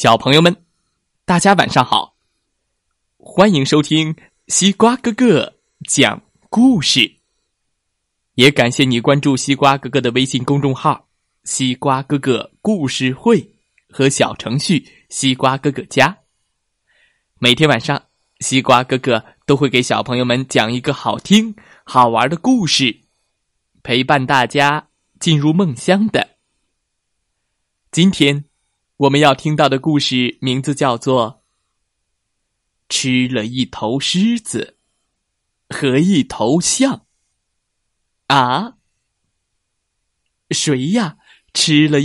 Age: 20-39